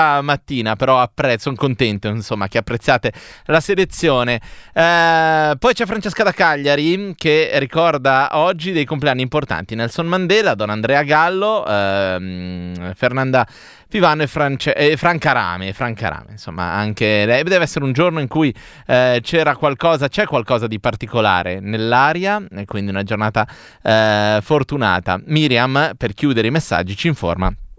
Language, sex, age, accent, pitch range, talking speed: Italian, male, 30-49, native, 110-160 Hz, 145 wpm